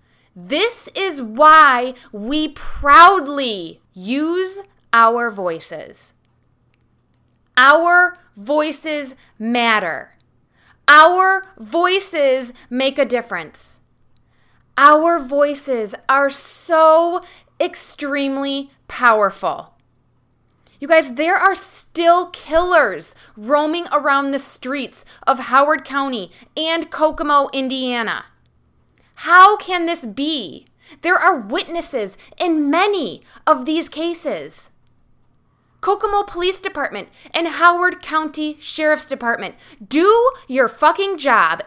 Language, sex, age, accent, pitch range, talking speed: English, female, 20-39, American, 245-335 Hz, 90 wpm